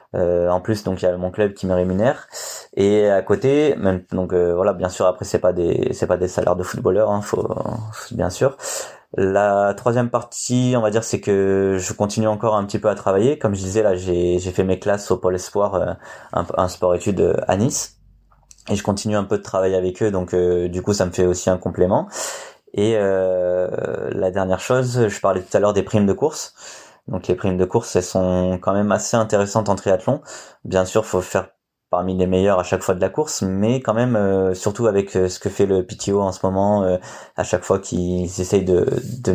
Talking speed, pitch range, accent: 230 wpm, 90-105 Hz, French